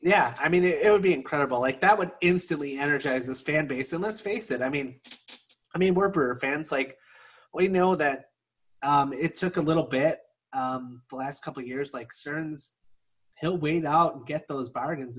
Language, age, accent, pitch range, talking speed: English, 30-49, American, 130-160 Hz, 205 wpm